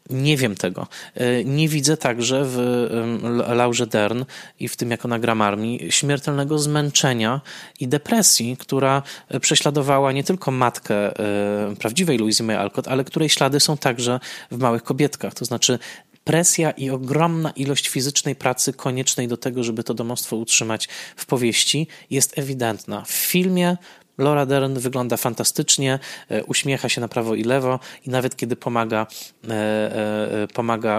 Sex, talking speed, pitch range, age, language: male, 135 wpm, 115-140 Hz, 20-39, Polish